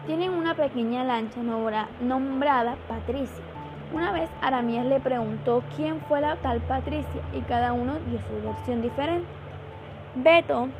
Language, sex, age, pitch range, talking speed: Spanish, female, 10-29, 235-290 Hz, 135 wpm